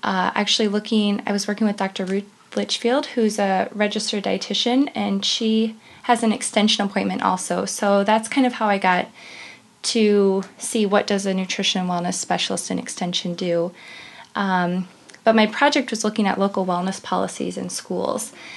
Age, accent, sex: 20-39, American, female